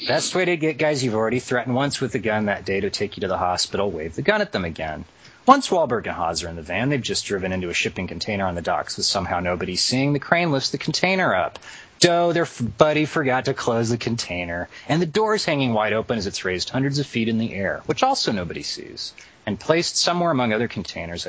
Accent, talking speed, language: American, 245 wpm, English